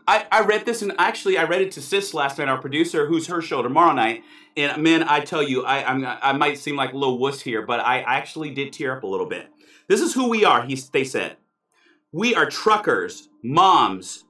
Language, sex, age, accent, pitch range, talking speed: English, male, 40-59, American, 190-320 Hz, 235 wpm